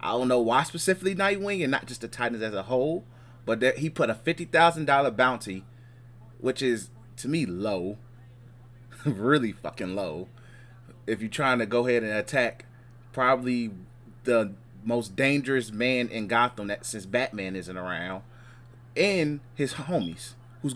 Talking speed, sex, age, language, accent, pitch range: 155 wpm, male, 30-49, English, American, 115-130 Hz